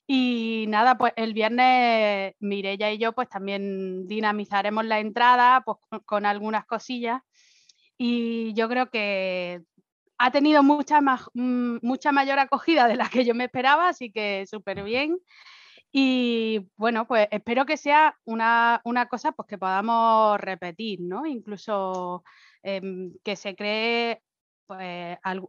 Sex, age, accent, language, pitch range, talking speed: female, 20-39, Spanish, Spanish, 200-245 Hz, 140 wpm